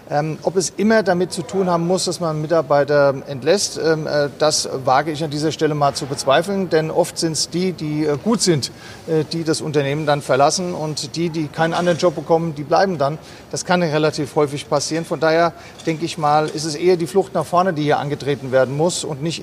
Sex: male